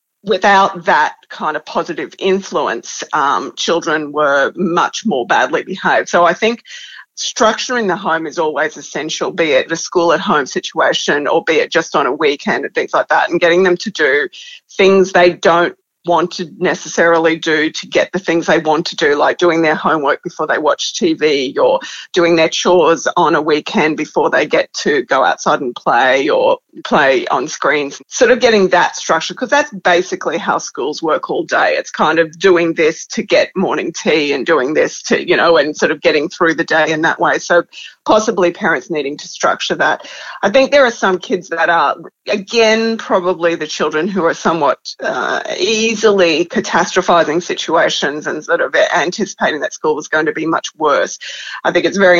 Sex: female